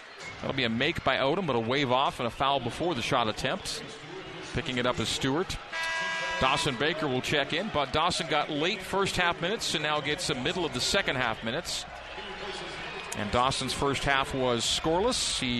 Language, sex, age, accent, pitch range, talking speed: English, male, 40-59, American, 120-150 Hz, 195 wpm